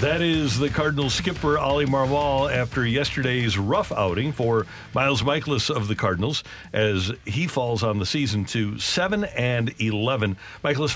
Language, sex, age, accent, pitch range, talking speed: English, male, 50-69, American, 110-145 Hz, 155 wpm